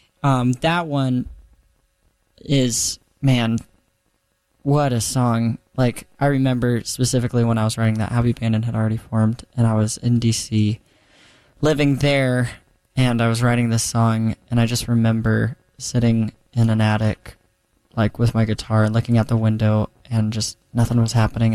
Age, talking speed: 20-39, 160 wpm